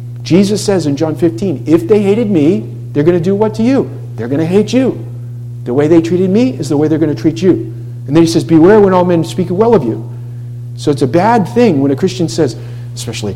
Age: 50-69